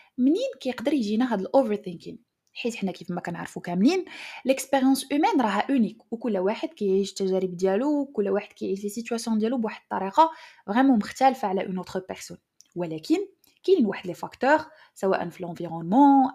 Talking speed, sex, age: 145 wpm, female, 20-39